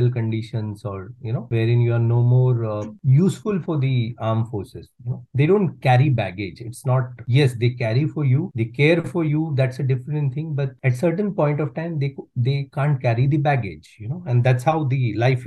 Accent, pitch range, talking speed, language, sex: Indian, 115-145 Hz, 215 wpm, English, male